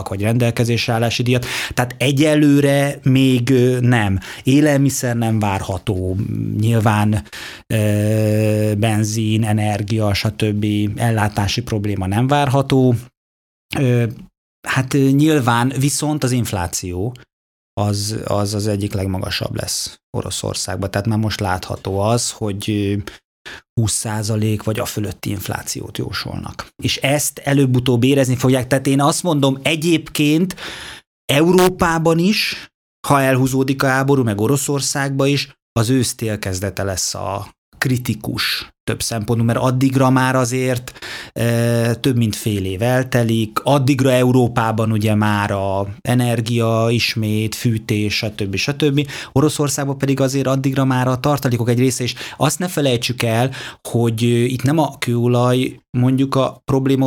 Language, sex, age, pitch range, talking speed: Hungarian, male, 30-49, 105-135 Hz, 120 wpm